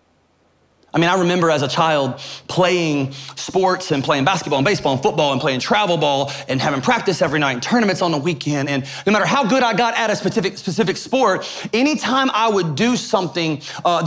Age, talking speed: 30-49, 205 wpm